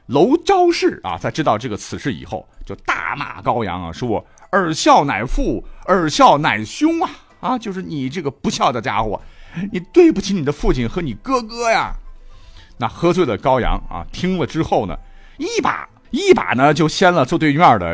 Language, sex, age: Chinese, male, 50-69